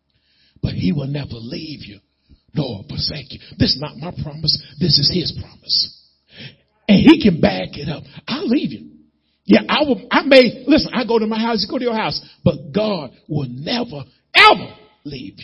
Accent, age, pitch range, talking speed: American, 50-69, 140-200 Hz, 190 wpm